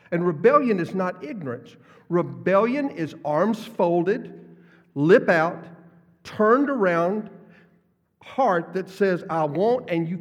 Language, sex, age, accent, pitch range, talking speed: English, male, 50-69, American, 145-205 Hz, 120 wpm